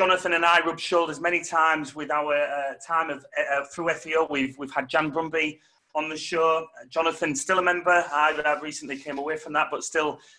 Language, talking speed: English, 215 wpm